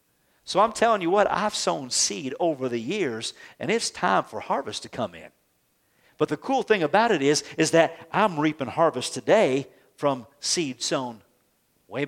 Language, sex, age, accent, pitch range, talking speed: English, male, 50-69, American, 145-195 Hz, 180 wpm